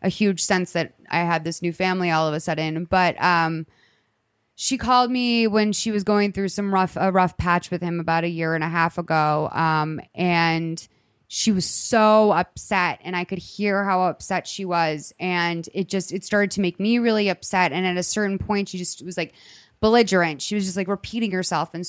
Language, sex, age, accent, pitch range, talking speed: English, female, 20-39, American, 170-205 Hz, 215 wpm